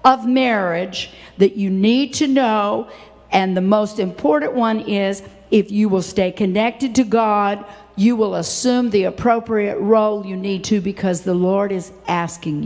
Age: 60-79